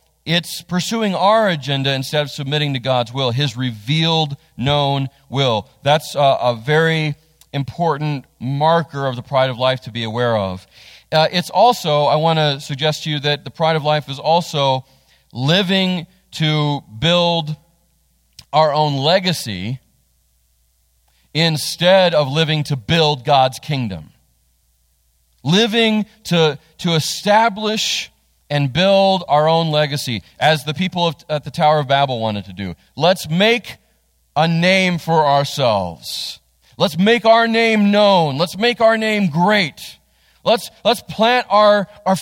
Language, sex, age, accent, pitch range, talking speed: English, male, 40-59, American, 130-180 Hz, 140 wpm